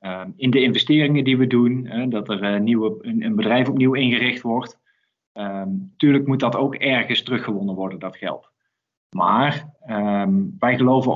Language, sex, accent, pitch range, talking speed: Dutch, male, Dutch, 110-140 Hz, 140 wpm